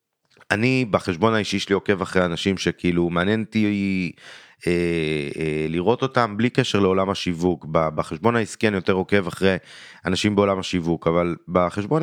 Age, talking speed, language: 30-49, 145 wpm, Hebrew